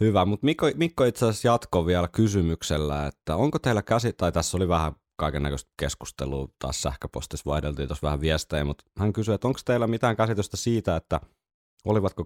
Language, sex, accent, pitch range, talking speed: Finnish, male, native, 75-95 Hz, 180 wpm